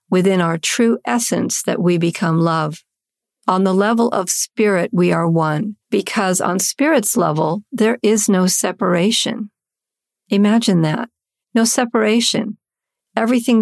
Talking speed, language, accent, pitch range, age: 130 wpm, English, American, 170-225 Hz, 50-69